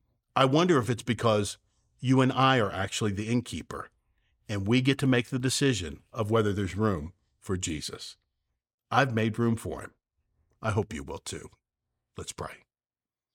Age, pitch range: 50-69, 110-135 Hz